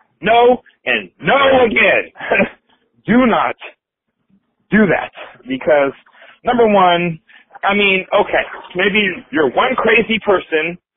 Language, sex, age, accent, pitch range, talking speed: English, male, 30-49, American, 140-205 Hz, 105 wpm